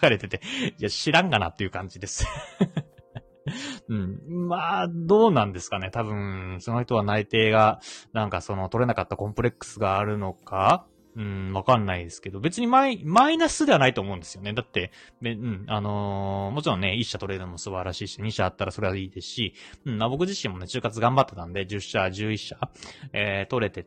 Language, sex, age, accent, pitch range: Japanese, male, 20-39, native, 100-155 Hz